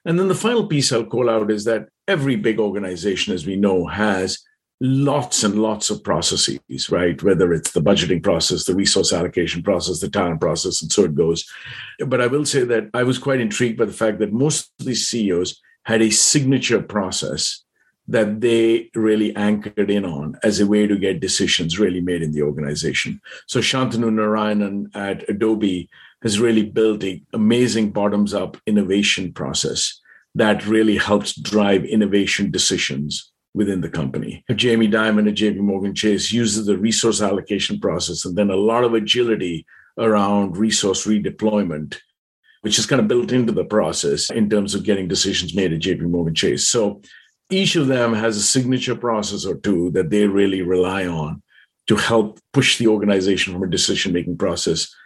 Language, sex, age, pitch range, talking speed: English, male, 50-69, 100-115 Hz, 175 wpm